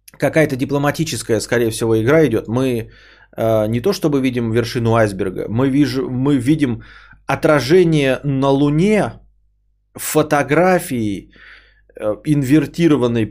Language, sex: Russian, male